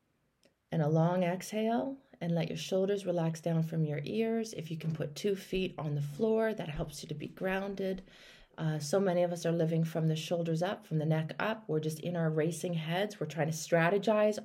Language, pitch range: English, 165-240 Hz